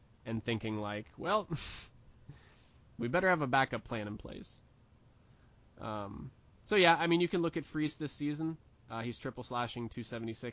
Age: 20-39